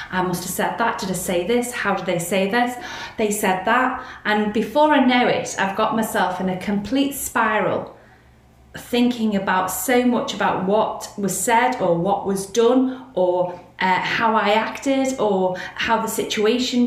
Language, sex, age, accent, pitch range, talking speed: English, female, 30-49, British, 190-245 Hz, 180 wpm